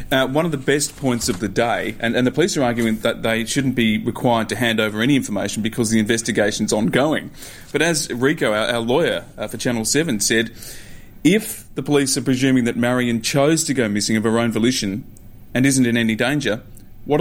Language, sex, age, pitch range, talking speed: English, male, 30-49, 110-135 Hz, 215 wpm